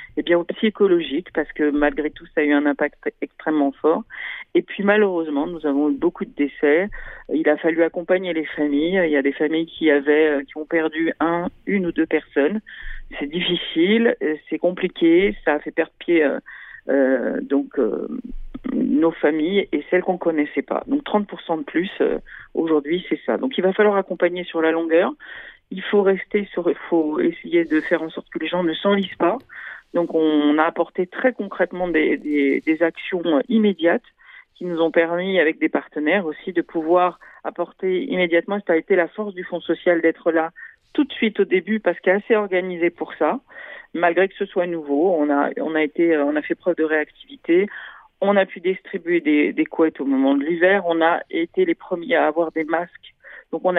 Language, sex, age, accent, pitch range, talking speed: Italian, female, 40-59, French, 155-190 Hz, 200 wpm